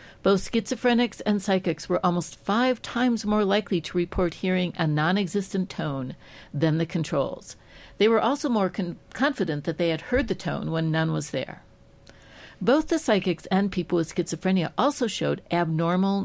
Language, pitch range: English, 160-205 Hz